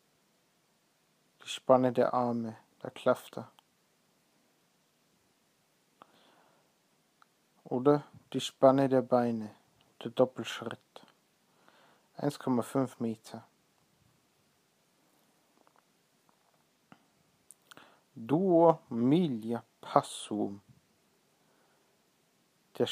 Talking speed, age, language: 45 wpm, 50-69, English